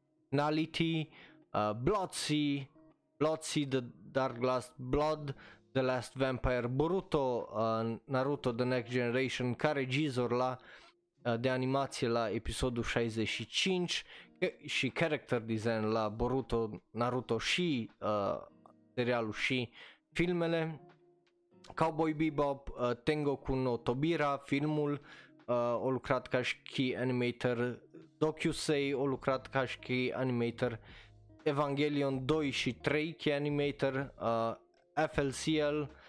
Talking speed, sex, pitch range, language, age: 110 wpm, male, 120-150 Hz, Romanian, 20-39